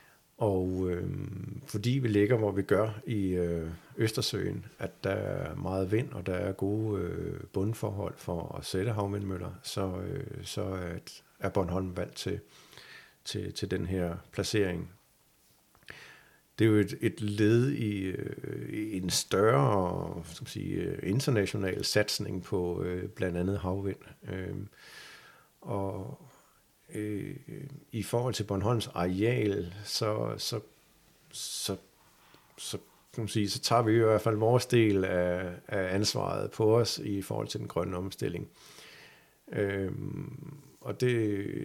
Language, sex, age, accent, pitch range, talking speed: Danish, male, 60-79, native, 95-115 Hz, 135 wpm